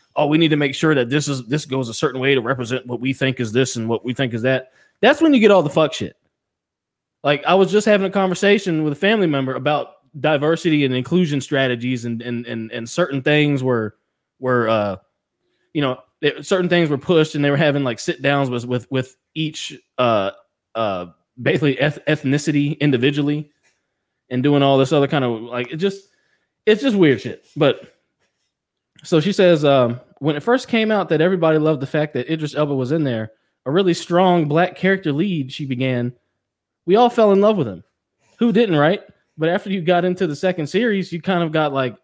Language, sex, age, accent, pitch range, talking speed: English, male, 20-39, American, 130-175 Hz, 215 wpm